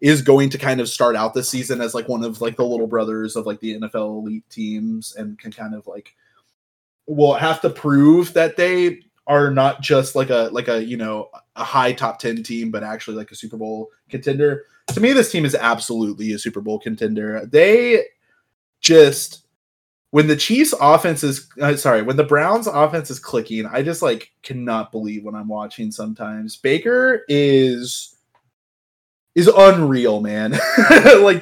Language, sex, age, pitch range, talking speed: English, male, 20-39, 120-175 Hz, 180 wpm